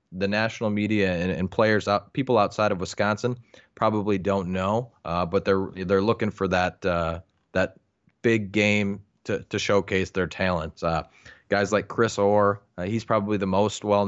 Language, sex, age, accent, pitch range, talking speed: English, male, 20-39, American, 95-105 Hz, 175 wpm